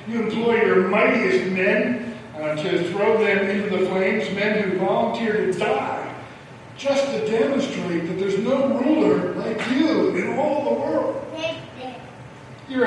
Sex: male